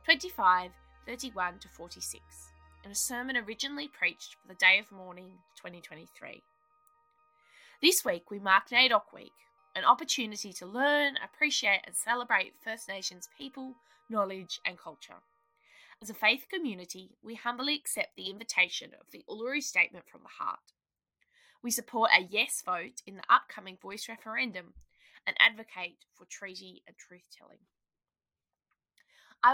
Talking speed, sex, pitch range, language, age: 135 wpm, female, 185-260 Hz, English, 20-39